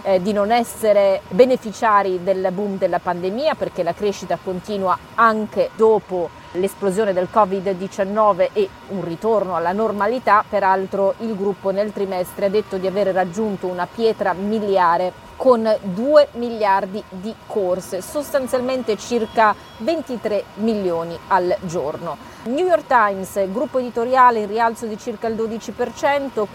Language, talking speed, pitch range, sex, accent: Italian, 130 wpm, 190-225 Hz, female, native